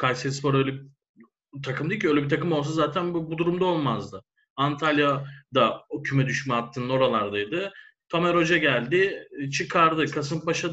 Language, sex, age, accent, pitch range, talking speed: Turkish, male, 30-49, native, 140-170 Hz, 145 wpm